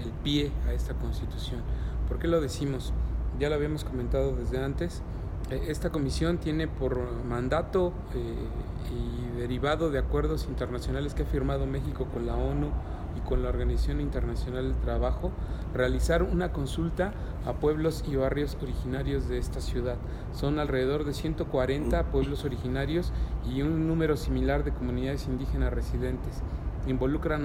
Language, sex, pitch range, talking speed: English, male, 95-145 Hz, 145 wpm